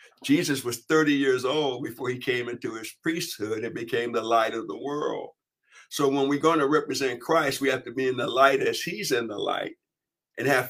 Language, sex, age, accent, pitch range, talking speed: English, male, 60-79, American, 130-165 Hz, 220 wpm